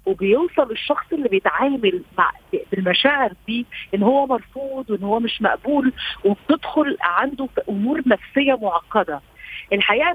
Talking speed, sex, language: 125 wpm, female, Arabic